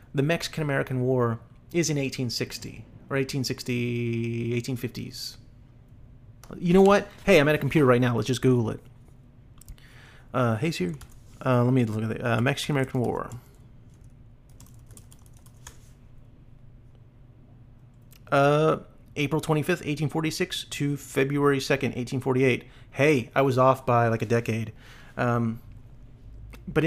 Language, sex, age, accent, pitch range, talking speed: English, male, 30-49, American, 120-140 Hz, 115 wpm